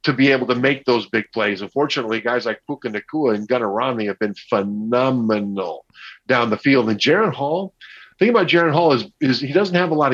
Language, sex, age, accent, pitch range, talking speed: English, male, 50-69, American, 120-155 Hz, 215 wpm